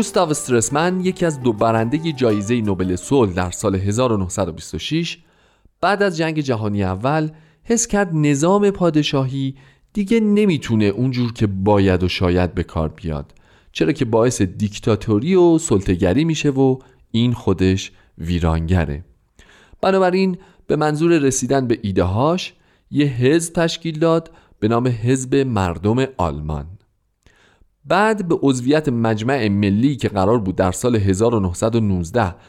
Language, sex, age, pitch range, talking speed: Persian, male, 40-59, 95-150 Hz, 125 wpm